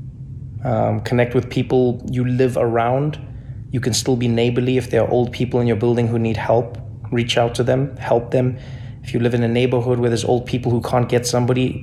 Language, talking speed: English, 220 wpm